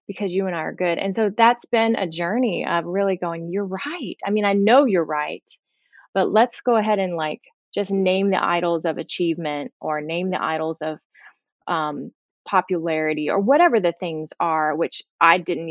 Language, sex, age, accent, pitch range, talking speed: English, female, 20-39, American, 160-195 Hz, 190 wpm